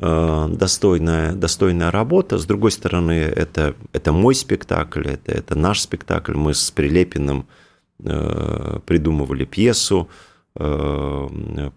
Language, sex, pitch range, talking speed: Russian, male, 75-95 Hz, 105 wpm